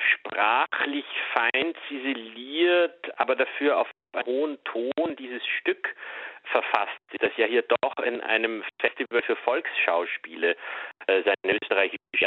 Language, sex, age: German, male, 40-59